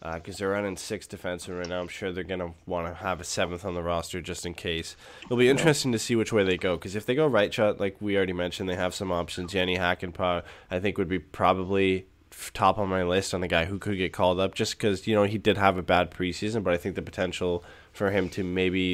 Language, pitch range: English, 90-105 Hz